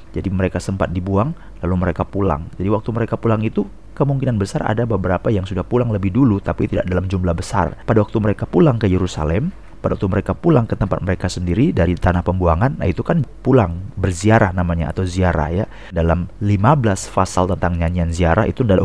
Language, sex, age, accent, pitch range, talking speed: Indonesian, male, 30-49, native, 95-125 Hz, 190 wpm